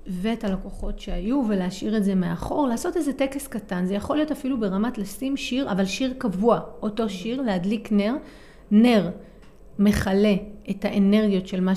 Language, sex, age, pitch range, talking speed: Hebrew, female, 30-49, 195-255 Hz, 160 wpm